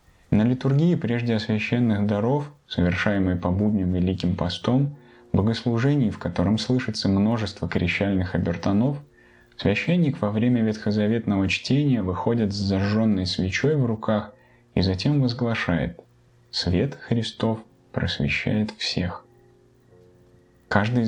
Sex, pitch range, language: male, 90-115 Hz, Russian